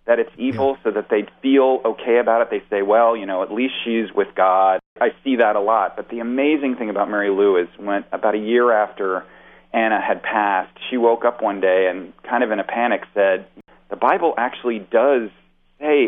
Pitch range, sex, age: 90-115 Hz, male, 40-59